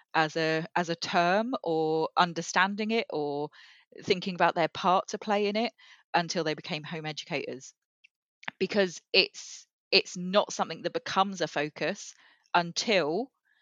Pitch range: 155-185 Hz